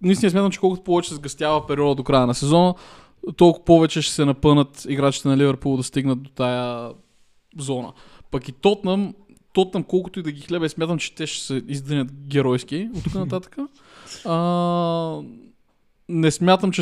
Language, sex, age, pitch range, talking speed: Bulgarian, male, 20-39, 140-175 Hz, 175 wpm